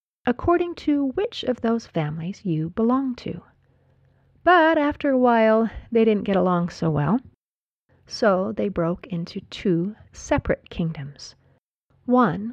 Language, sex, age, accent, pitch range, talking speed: English, female, 40-59, American, 180-245 Hz, 130 wpm